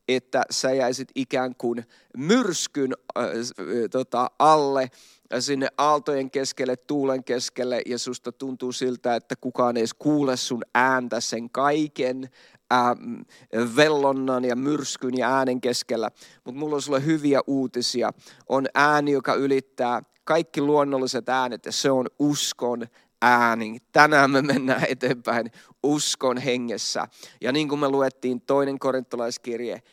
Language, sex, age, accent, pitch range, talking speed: English, male, 30-49, Finnish, 125-145 Hz, 130 wpm